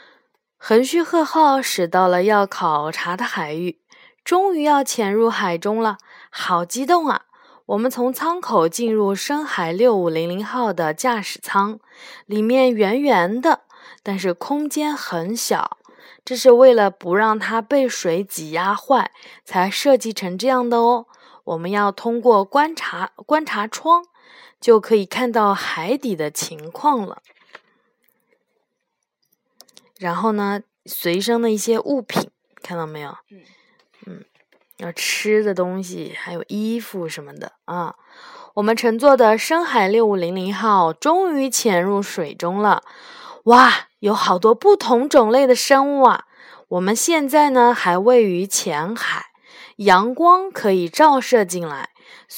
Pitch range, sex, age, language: 185-270 Hz, female, 20-39, Chinese